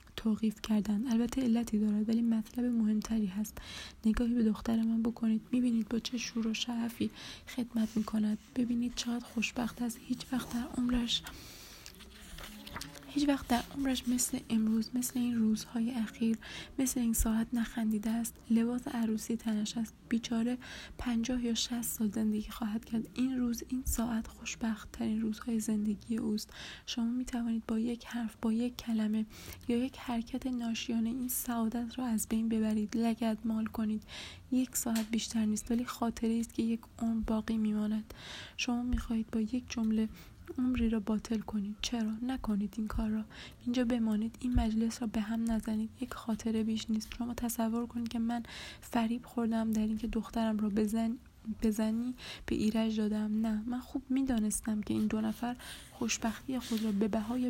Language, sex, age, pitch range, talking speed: Persian, female, 20-39, 220-240 Hz, 165 wpm